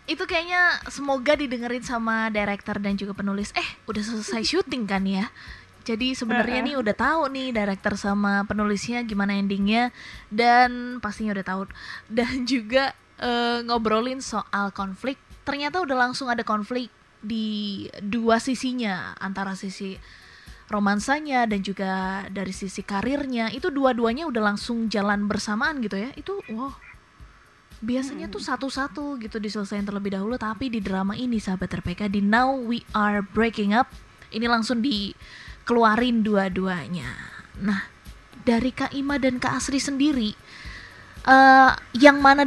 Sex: female